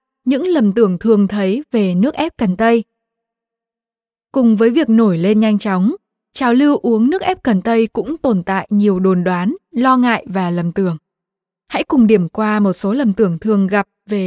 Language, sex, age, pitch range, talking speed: Vietnamese, female, 20-39, 205-260 Hz, 195 wpm